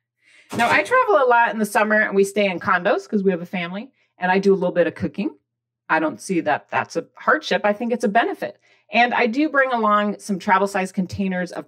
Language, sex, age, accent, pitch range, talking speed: English, female, 40-59, American, 160-225 Hz, 240 wpm